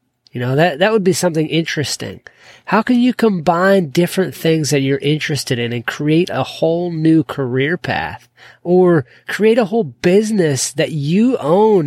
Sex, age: male, 30-49